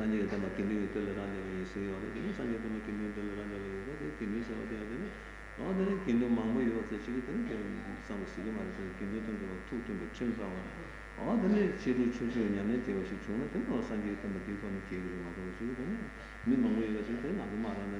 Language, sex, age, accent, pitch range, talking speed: Italian, male, 60-79, Indian, 100-115 Hz, 40 wpm